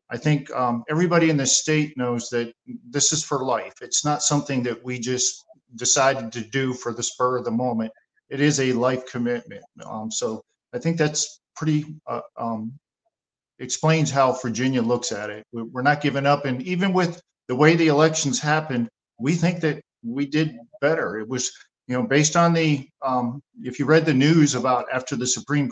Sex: male